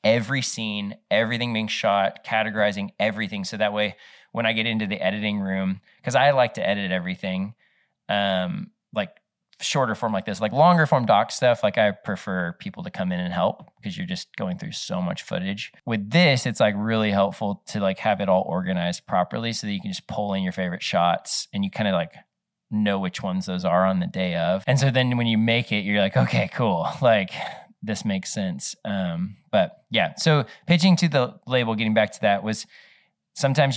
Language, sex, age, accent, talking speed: English, male, 20-39, American, 210 wpm